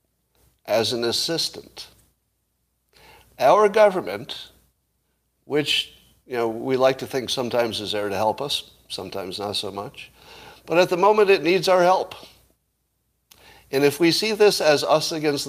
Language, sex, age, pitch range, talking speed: English, male, 60-79, 115-165 Hz, 145 wpm